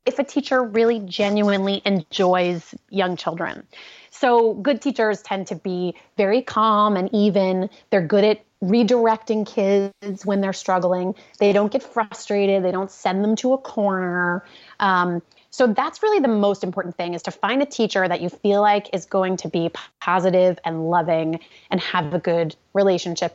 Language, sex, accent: English, female, American